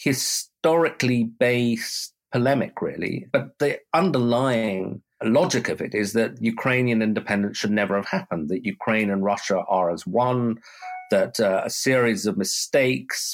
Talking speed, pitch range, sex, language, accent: 135 wpm, 100-130 Hz, male, English, British